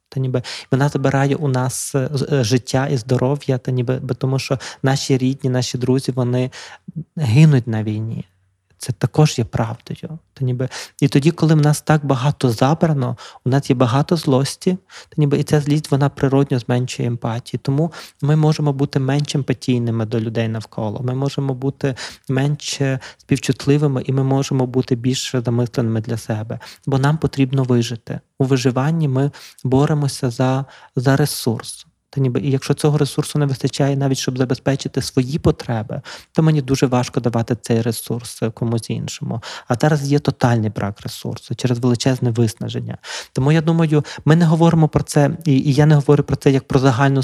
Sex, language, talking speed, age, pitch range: male, Ukrainian, 165 wpm, 20-39, 125-145 Hz